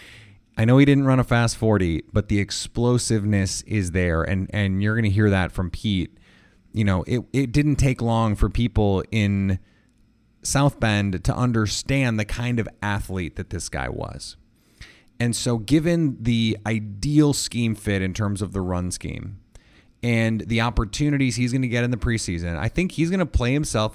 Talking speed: 185 wpm